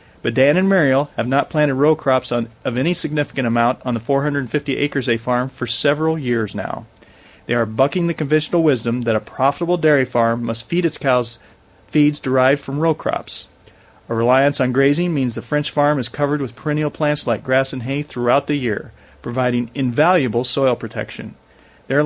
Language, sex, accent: English, male, American